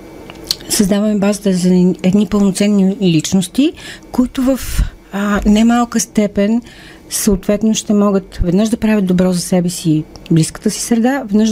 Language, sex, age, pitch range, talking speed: Bulgarian, female, 40-59, 185-220 Hz, 135 wpm